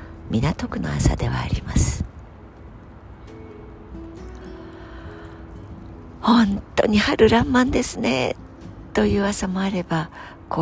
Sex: female